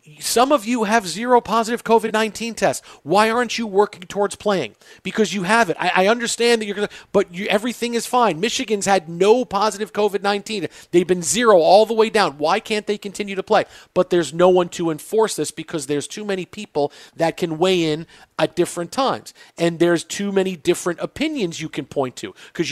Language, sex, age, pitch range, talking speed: English, male, 40-59, 165-210 Hz, 205 wpm